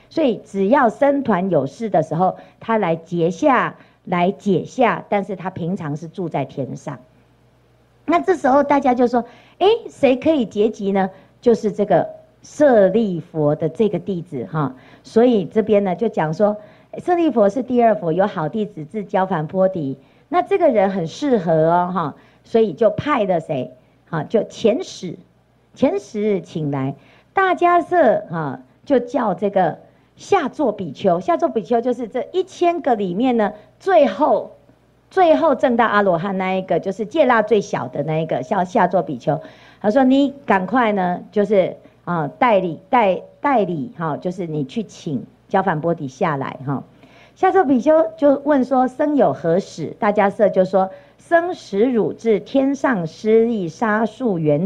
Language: Chinese